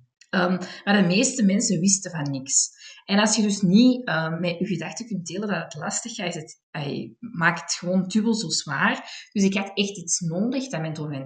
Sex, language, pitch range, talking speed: female, Dutch, 160-210 Hz, 215 wpm